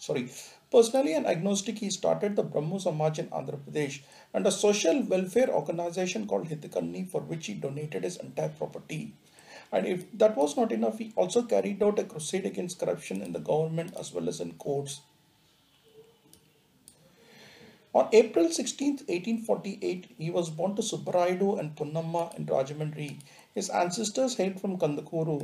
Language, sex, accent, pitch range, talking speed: English, male, Indian, 160-215 Hz, 155 wpm